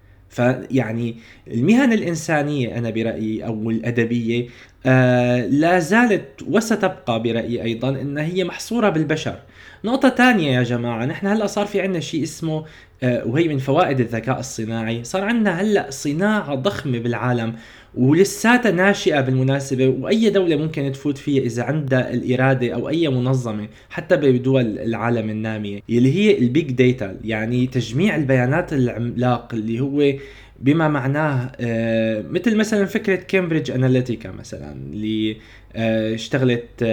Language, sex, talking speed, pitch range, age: Arabic, male, 125 wpm, 120-175 Hz, 20-39